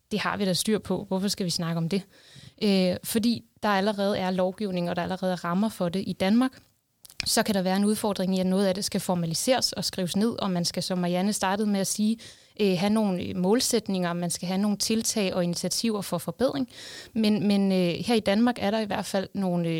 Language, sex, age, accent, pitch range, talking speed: Danish, female, 20-39, native, 185-210 Hz, 225 wpm